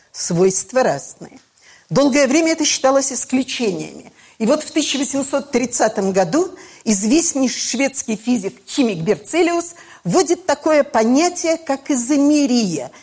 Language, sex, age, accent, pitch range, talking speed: Russian, female, 50-69, native, 225-315 Hz, 100 wpm